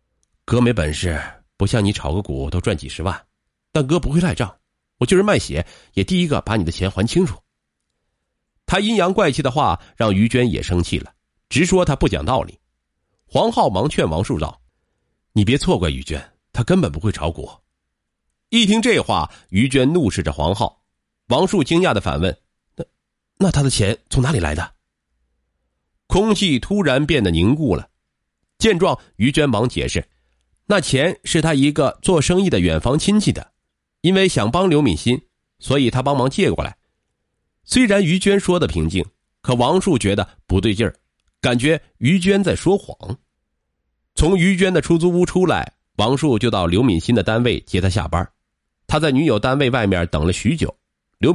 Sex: male